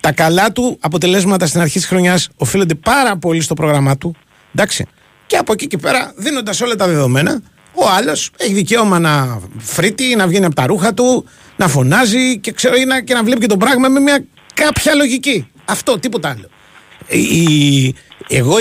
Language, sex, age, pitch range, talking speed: Greek, male, 30-49, 145-220 Hz, 180 wpm